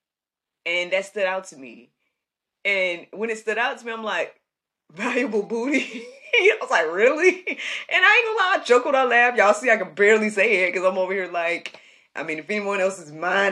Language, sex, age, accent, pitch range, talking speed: English, female, 20-39, American, 145-205 Hz, 215 wpm